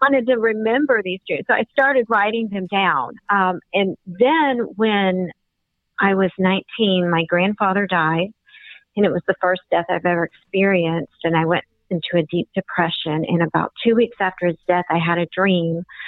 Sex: female